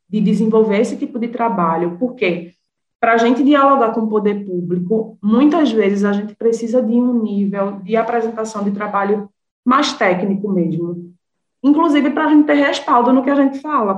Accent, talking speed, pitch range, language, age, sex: Brazilian, 175 wpm, 195-245 Hz, Portuguese, 20-39, female